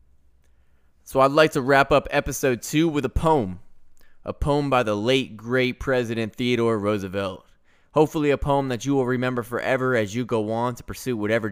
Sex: male